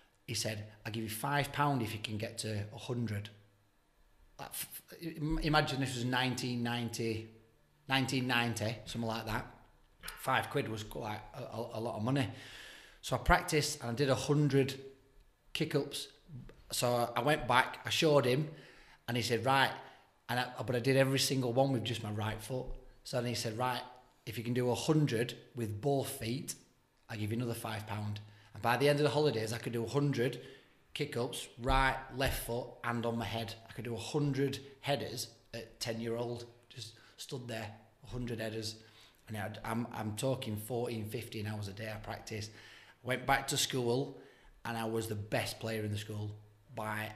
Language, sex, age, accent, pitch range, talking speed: English, male, 30-49, British, 110-130 Hz, 170 wpm